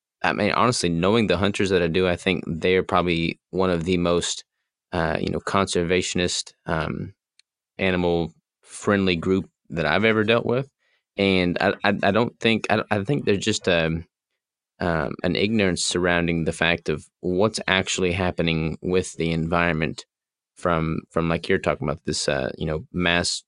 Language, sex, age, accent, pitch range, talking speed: English, male, 20-39, American, 80-95 Hz, 170 wpm